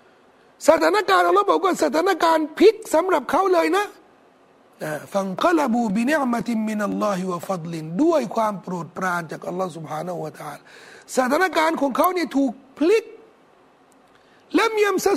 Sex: male